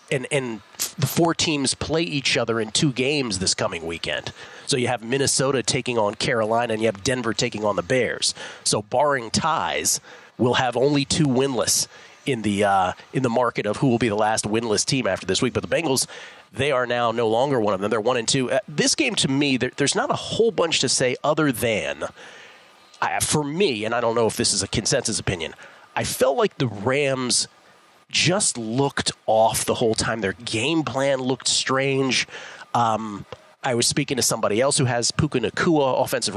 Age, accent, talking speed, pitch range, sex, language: 40-59, American, 205 wpm, 115-145 Hz, male, English